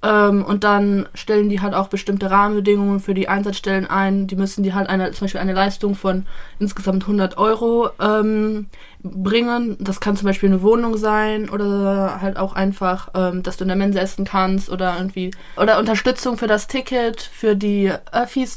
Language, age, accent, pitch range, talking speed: French, 20-39, German, 195-215 Hz, 180 wpm